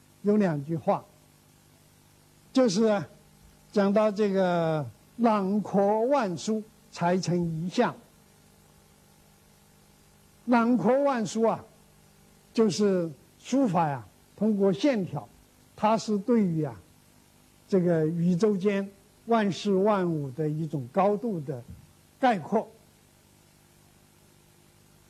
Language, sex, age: Chinese, male, 60-79